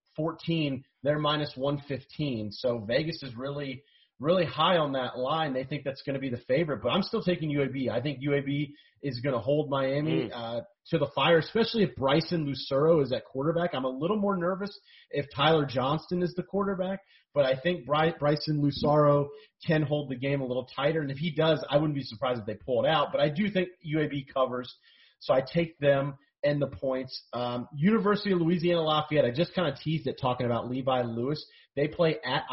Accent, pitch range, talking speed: American, 130-165 Hz, 205 wpm